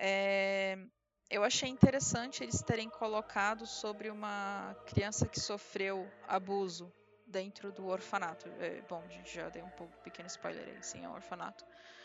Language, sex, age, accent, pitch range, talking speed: Portuguese, female, 20-39, Brazilian, 190-235 Hz, 155 wpm